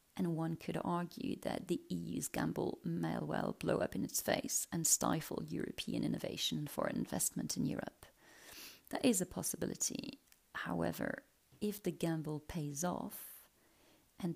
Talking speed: 140 wpm